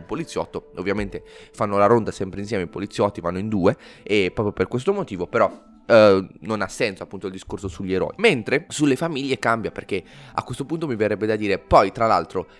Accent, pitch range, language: native, 105-130 Hz, Italian